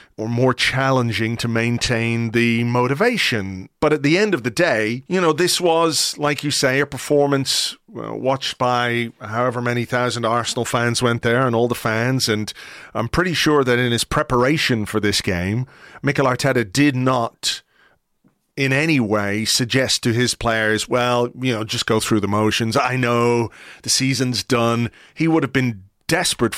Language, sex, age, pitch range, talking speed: English, male, 30-49, 110-135 Hz, 170 wpm